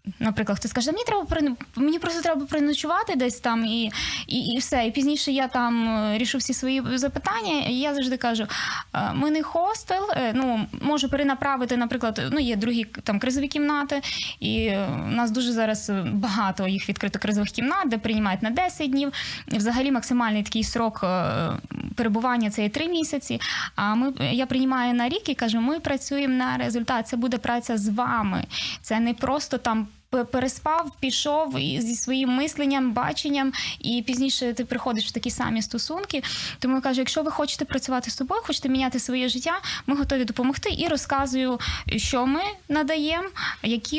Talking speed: 165 wpm